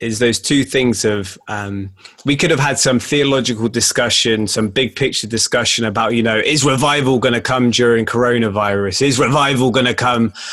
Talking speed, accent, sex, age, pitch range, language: 185 wpm, British, male, 20-39, 110-130 Hz, English